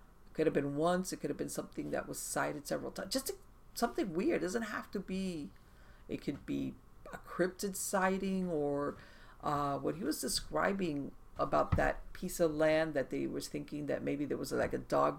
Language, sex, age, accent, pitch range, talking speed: English, female, 50-69, American, 135-190 Hz, 205 wpm